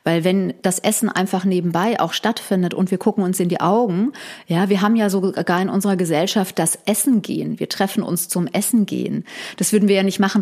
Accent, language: German, German